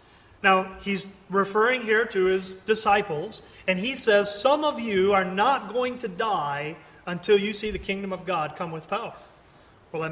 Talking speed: 180 wpm